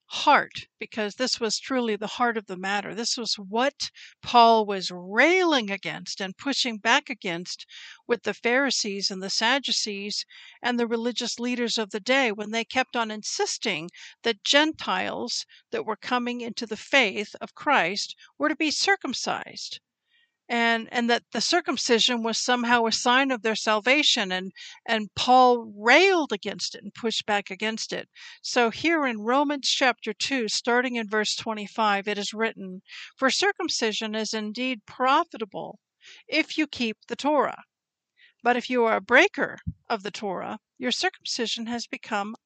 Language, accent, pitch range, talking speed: English, American, 215-270 Hz, 160 wpm